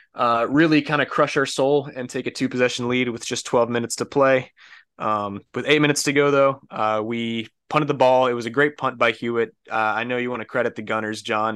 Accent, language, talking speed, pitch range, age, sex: American, English, 250 wpm, 110-125 Hz, 20-39, male